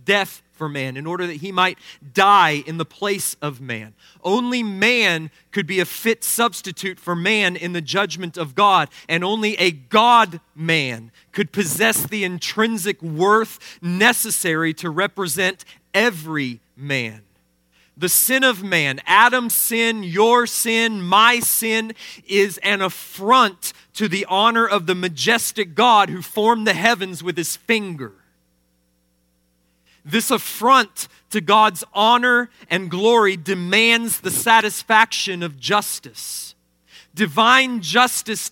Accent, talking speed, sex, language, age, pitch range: American, 130 wpm, male, English, 40-59, 165-225 Hz